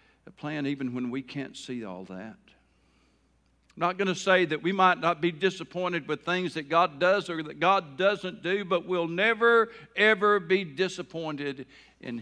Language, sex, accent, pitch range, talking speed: English, male, American, 130-185 Hz, 180 wpm